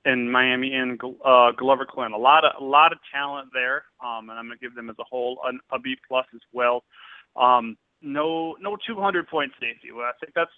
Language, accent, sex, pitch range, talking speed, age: English, American, male, 125-155 Hz, 225 wpm, 30-49